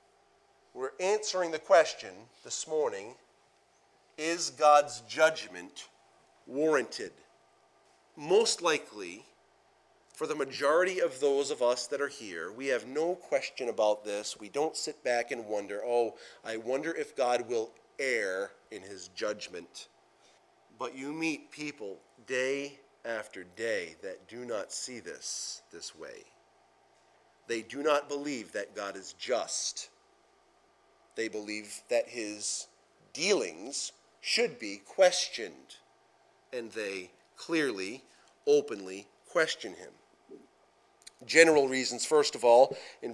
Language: English